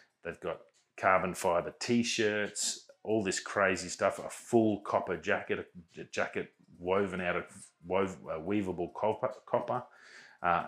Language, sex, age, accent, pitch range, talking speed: English, male, 30-49, Australian, 90-105 Hz, 125 wpm